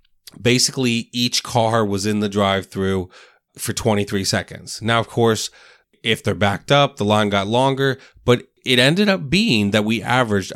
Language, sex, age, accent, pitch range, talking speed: English, male, 30-49, American, 100-135 Hz, 165 wpm